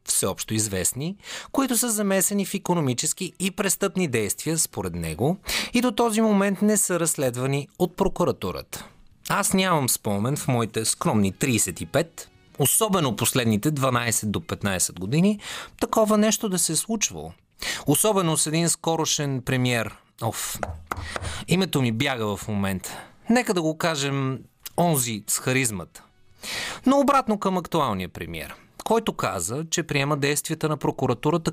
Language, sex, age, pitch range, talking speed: Bulgarian, male, 30-49, 110-185 Hz, 135 wpm